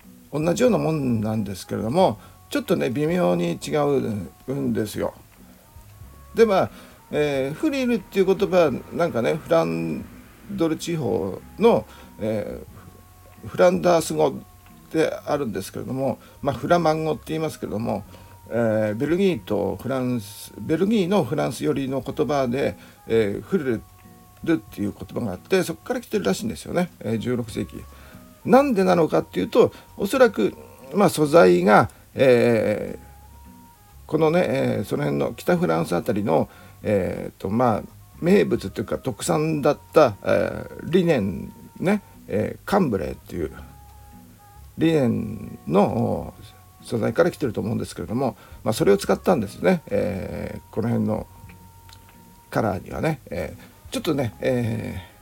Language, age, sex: Japanese, 50-69, male